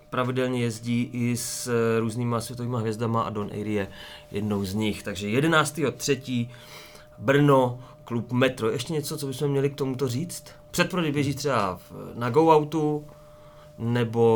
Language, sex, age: Czech, male, 30-49